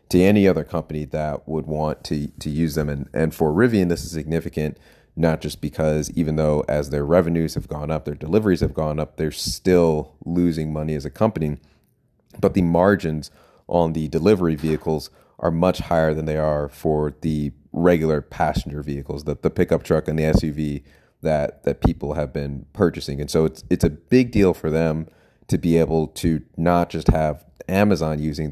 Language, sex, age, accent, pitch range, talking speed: English, male, 30-49, American, 75-85 Hz, 190 wpm